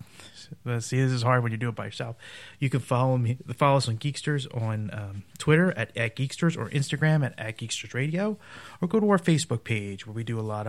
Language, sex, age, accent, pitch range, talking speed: English, male, 30-49, American, 110-145 Hz, 230 wpm